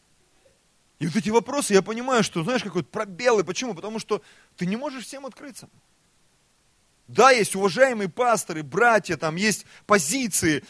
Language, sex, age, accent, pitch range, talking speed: Russian, male, 30-49, native, 130-180 Hz, 145 wpm